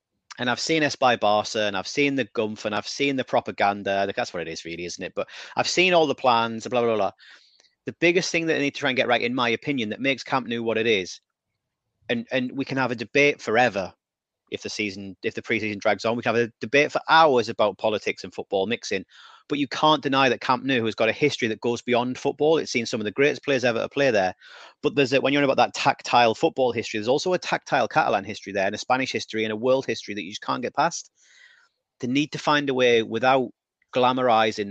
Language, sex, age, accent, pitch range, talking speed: English, male, 30-49, British, 110-145 Hz, 255 wpm